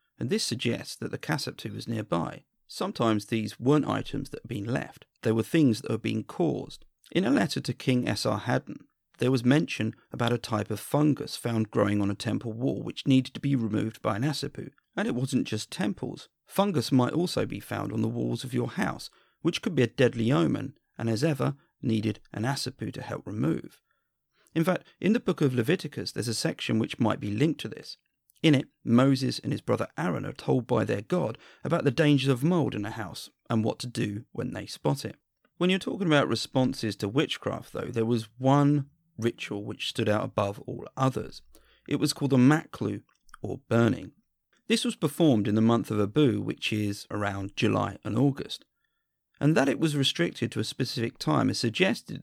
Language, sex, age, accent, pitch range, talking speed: English, male, 40-59, British, 110-145 Hz, 200 wpm